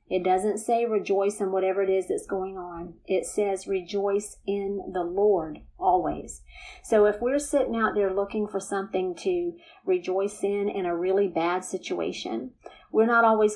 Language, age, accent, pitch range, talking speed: English, 40-59, American, 190-225 Hz, 170 wpm